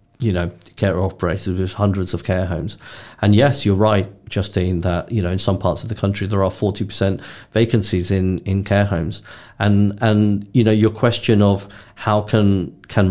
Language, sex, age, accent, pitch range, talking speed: English, male, 40-59, British, 95-110 Hz, 190 wpm